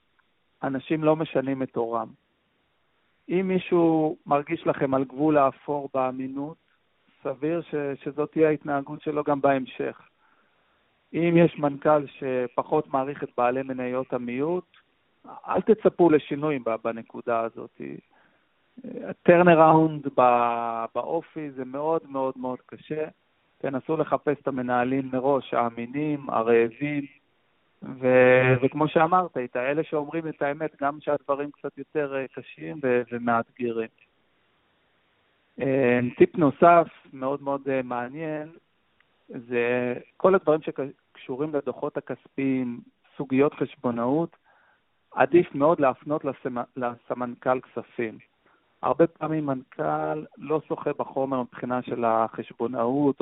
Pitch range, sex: 125-155 Hz, male